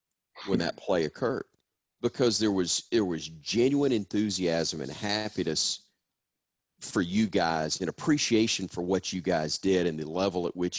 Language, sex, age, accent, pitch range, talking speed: English, male, 40-59, American, 80-100 Hz, 155 wpm